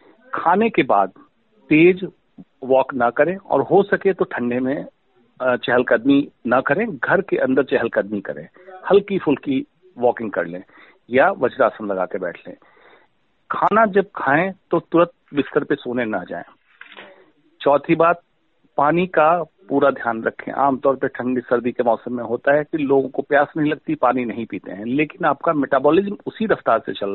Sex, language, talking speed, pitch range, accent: male, Hindi, 165 wpm, 125-175 Hz, native